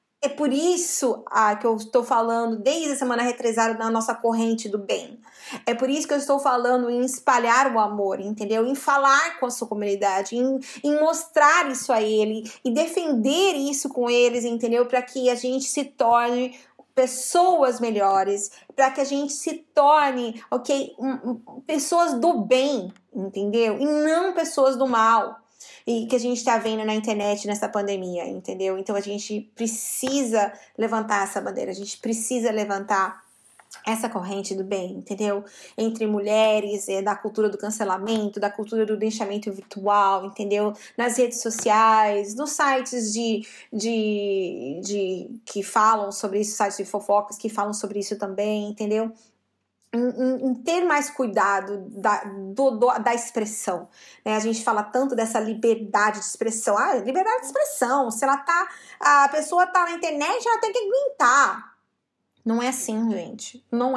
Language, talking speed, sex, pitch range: Portuguese, 165 wpm, female, 210-265 Hz